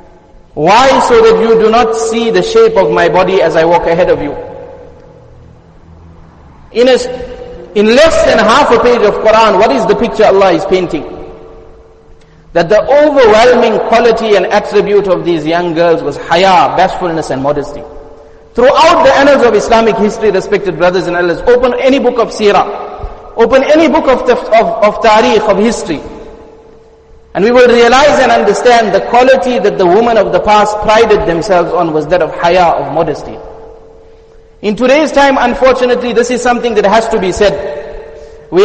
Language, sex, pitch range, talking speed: English, male, 185-250 Hz, 170 wpm